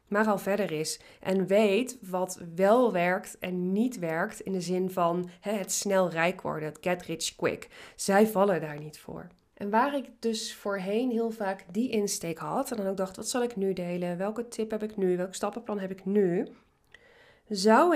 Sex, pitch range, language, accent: female, 175-225 Hz, Dutch, Dutch